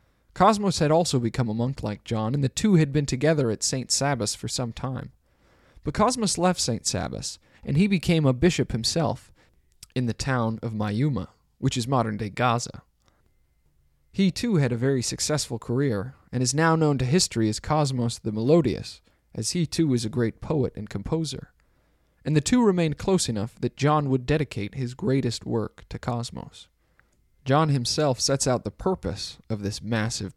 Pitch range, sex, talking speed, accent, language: 110-150 Hz, male, 180 wpm, American, English